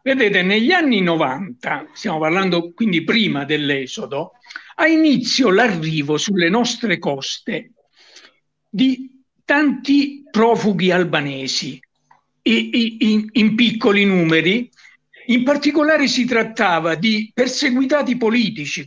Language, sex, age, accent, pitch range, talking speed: Italian, male, 60-79, native, 170-230 Hz, 95 wpm